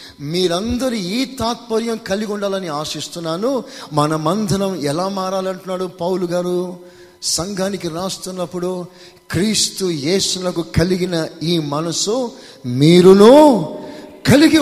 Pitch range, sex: 160-235 Hz, male